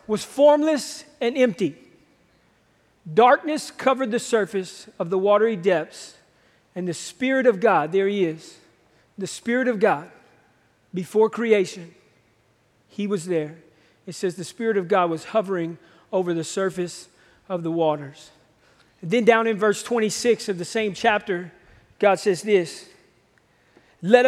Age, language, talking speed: 40-59, English, 140 wpm